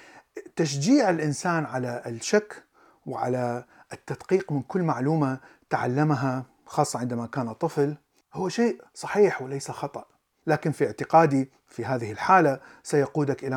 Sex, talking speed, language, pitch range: male, 120 wpm, Arabic, 125-155 Hz